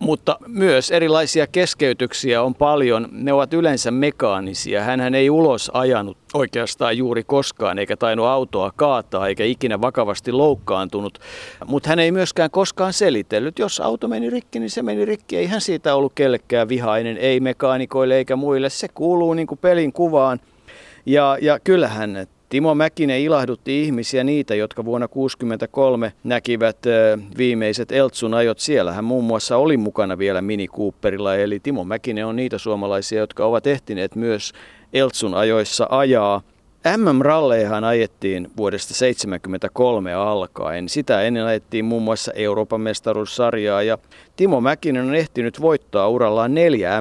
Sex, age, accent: male, 50-69, native